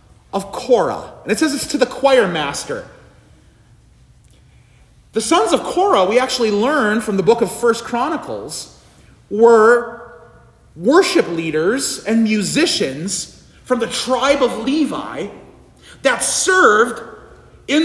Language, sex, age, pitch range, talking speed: English, male, 40-59, 215-305 Hz, 120 wpm